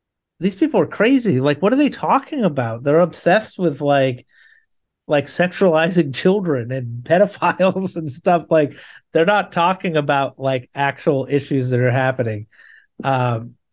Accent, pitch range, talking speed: American, 150-180 Hz, 145 wpm